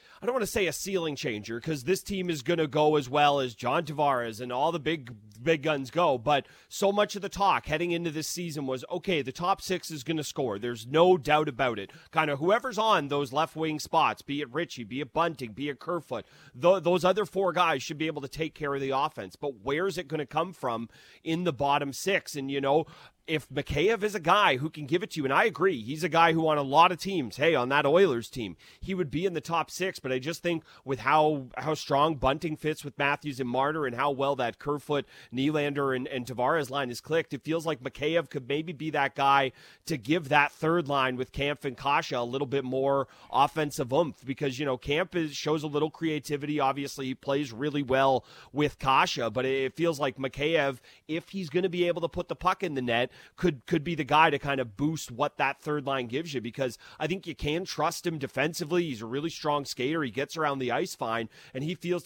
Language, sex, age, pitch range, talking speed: English, male, 30-49, 135-165 Hz, 240 wpm